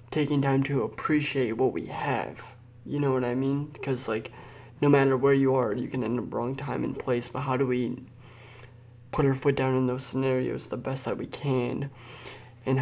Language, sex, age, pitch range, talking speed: English, male, 20-39, 125-140 Hz, 205 wpm